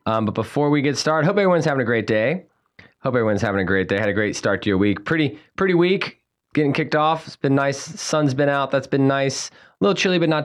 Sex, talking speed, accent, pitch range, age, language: male, 260 wpm, American, 100-135 Hz, 20-39, English